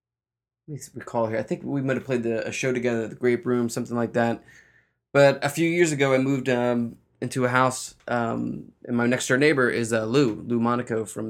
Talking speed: 225 wpm